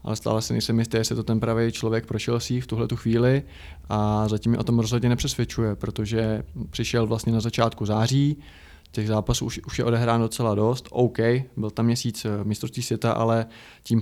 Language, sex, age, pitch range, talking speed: Czech, male, 20-39, 110-120 Hz, 195 wpm